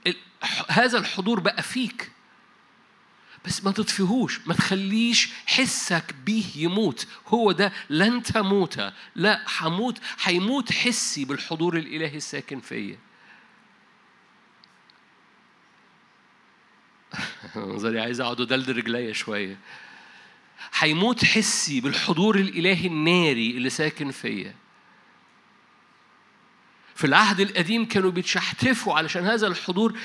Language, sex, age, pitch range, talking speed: Arabic, male, 50-69, 165-225 Hz, 90 wpm